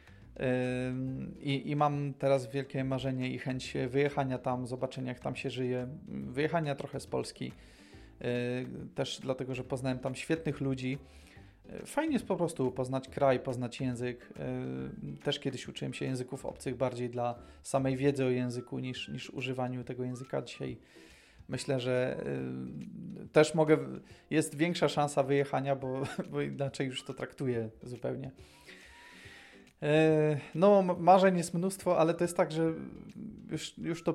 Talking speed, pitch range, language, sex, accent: 140 wpm, 130-150 Hz, Polish, male, native